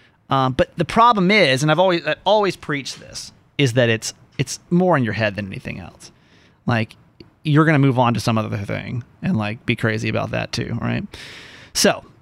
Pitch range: 125-180 Hz